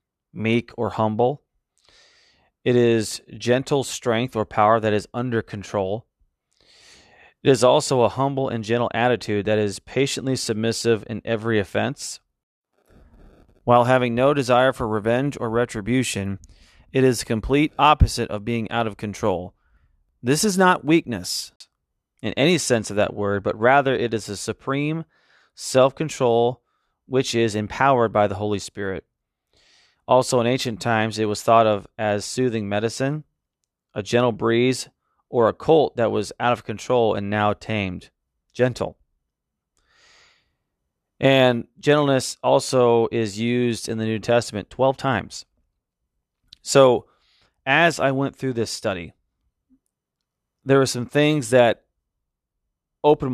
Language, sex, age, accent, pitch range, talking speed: English, male, 30-49, American, 105-130 Hz, 135 wpm